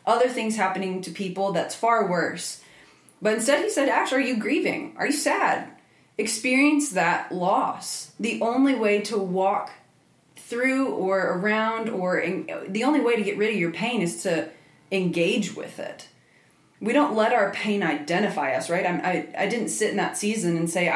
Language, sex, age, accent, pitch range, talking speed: English, female, 20-39, American, 180-225 Hz, 180 wpm